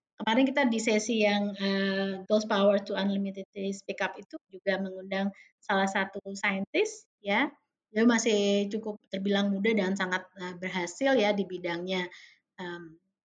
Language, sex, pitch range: Indonesian, female, 190-220 Hz